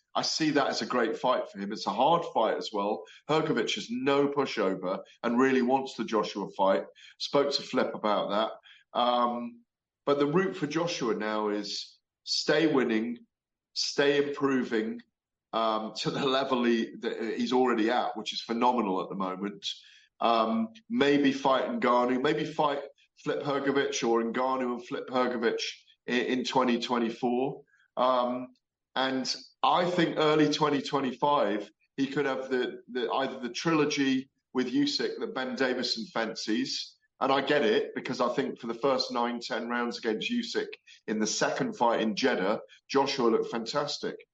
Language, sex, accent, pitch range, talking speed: English, male, British, 120-145 Hz, 160 wpm